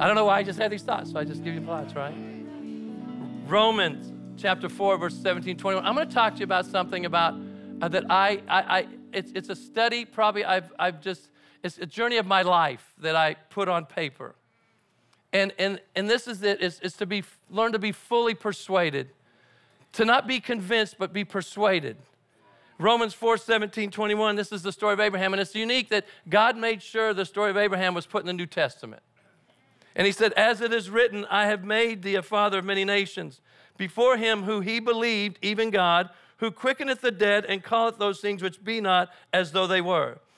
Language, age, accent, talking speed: English, 40-59, American, 210 wpm